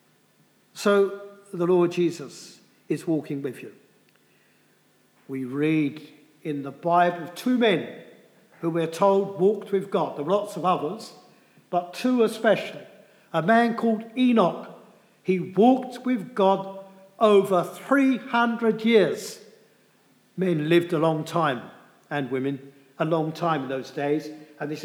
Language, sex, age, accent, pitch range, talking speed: English, male, 50-69, British, 165-220 Hz, 135 wpm